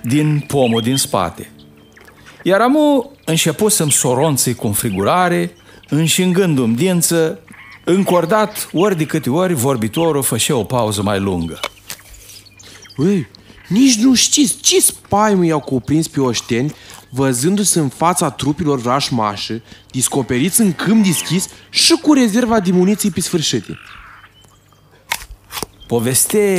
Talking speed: 115 wpm